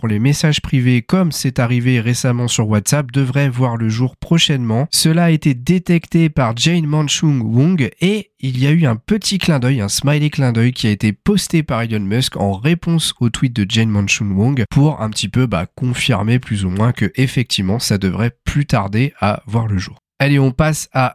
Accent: French